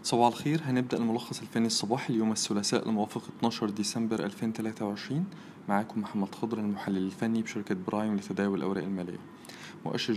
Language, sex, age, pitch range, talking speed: Arabic, male, 20-39, 110-130 Hz, 135 wpm